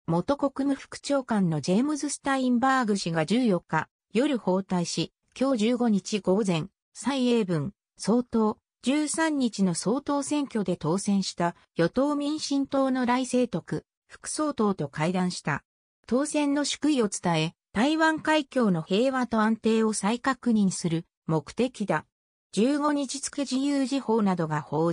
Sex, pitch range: female, 175-270 Hz